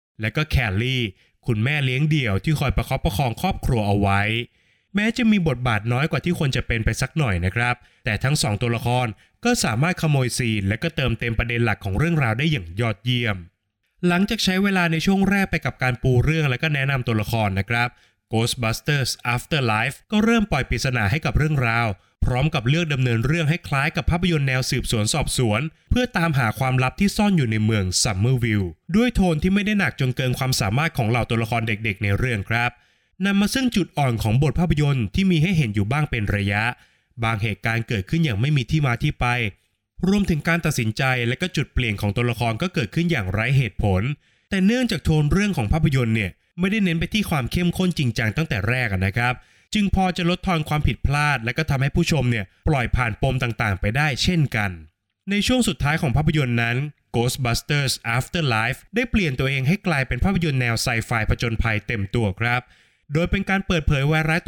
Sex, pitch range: male, 115-160 Hz